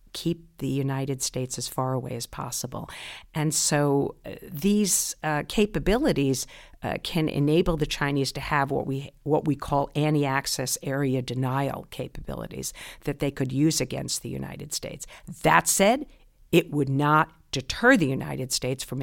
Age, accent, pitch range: 50-69, American, 135-155 Hz